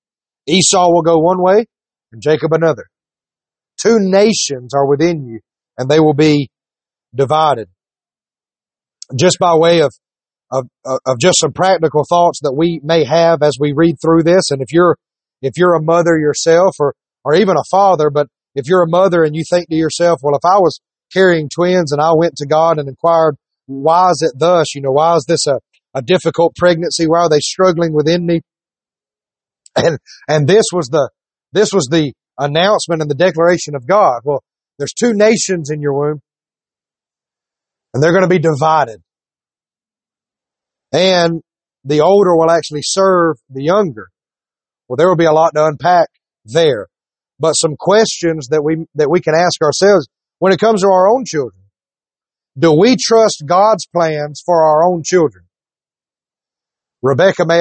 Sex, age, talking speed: male, 30-49, 170 wpm